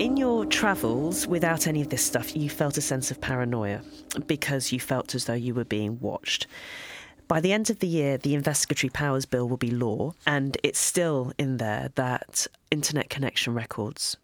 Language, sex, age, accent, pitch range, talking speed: English, female, 30-49, British, 115-145 Hz, 190 wpm